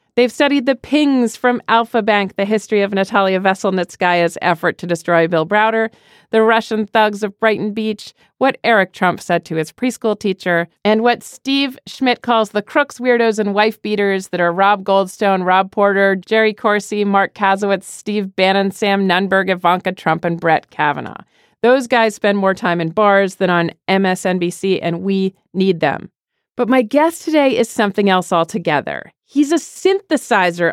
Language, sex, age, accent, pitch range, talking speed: English, female, 40-59, American, 185-245 Hz, 170 wpm